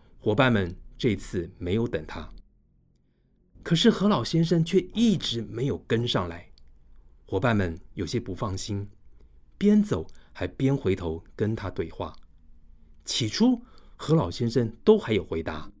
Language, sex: Chinese, male